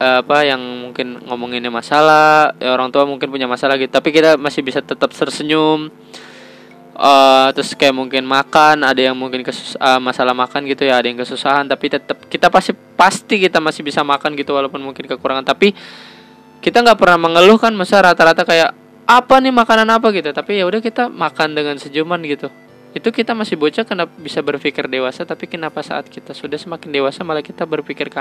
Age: 20-39